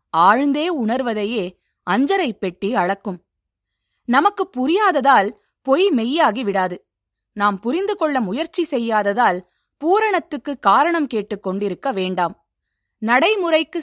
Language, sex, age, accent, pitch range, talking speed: Tamil, female, 20-39, native, 200-300 Hz, 85 wpm